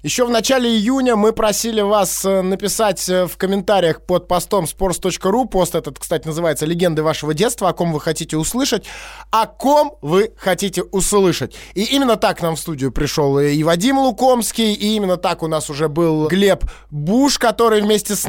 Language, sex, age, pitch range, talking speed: Russian, male, 20-39, 165-225 Hz, 170 wpm